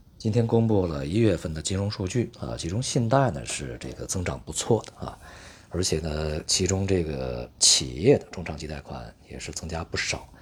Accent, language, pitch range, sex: native, Chinese, 70-100 Hz, male